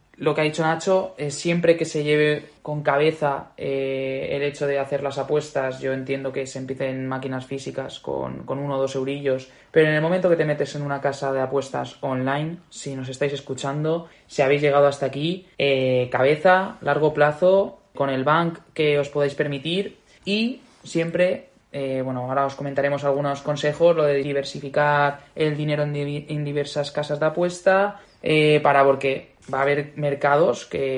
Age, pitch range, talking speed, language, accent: 20-39, 140-170 Hz, 180 wpm, Spanish, Spanish